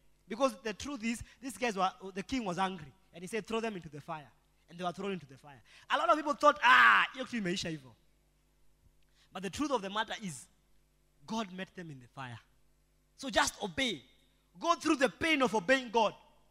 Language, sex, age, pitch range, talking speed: English, male, 20-39, 150-245 Hz, 210 wpm